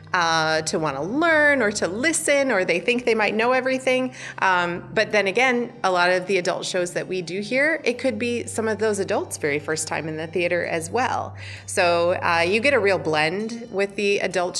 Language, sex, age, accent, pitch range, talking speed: English, female, 30-49, American, 155-205 Hz, 220 wpm